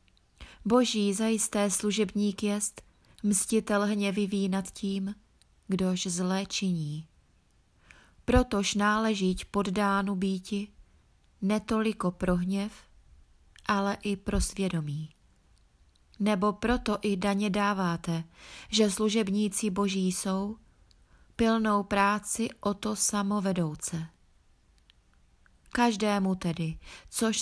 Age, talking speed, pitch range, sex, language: 30-49, 85 wpm, 170-210 Hz, female, Czech